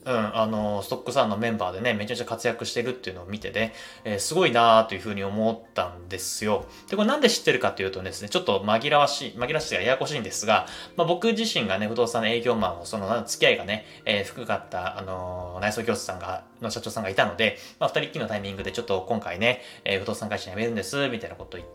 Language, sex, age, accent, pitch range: Japanese, male, 20-39, native, 100-125 Hz